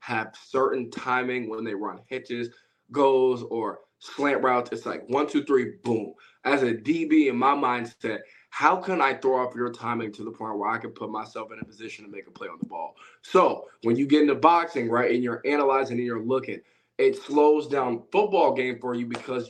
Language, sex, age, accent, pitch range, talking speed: English, male, 20-39, American, 115-140 Hz, 210 wpm